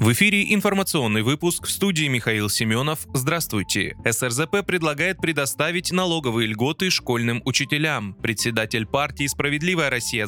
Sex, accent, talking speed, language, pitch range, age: male, native, 115 wpm, Russian, 120-160 Hz, 20-39